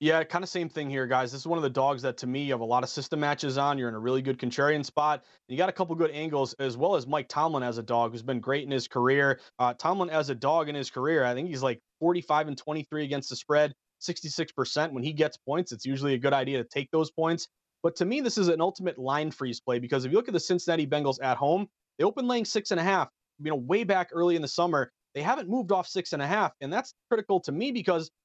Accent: American